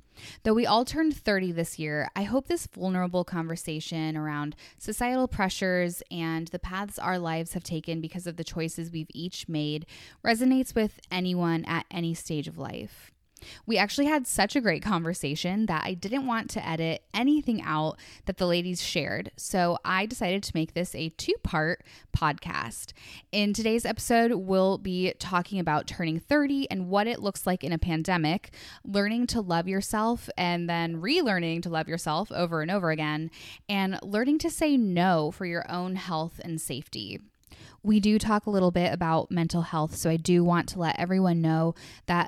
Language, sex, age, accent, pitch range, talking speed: English, female, 10-29, American, 160-205 Hz, 175 wpm